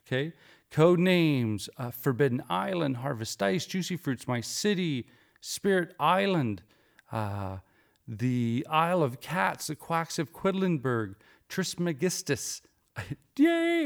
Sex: male